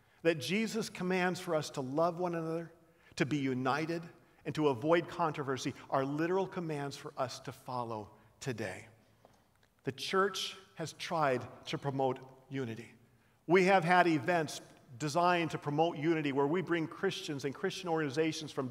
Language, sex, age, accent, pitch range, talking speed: English, male, 50-69, American, 135-185 Hz, 150 wpm